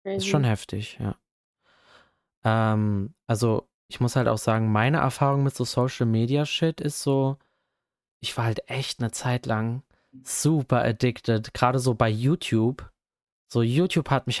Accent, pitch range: German, 115-150 Hz